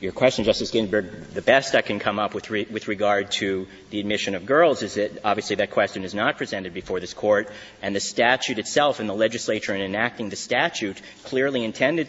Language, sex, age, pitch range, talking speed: English, male, 30-49, 100-120 Hz, 215 wpm